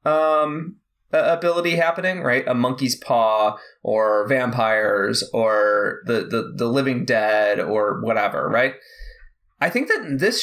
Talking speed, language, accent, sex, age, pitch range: 130 wpm, English, American, male, 20-39, 115-155 Hz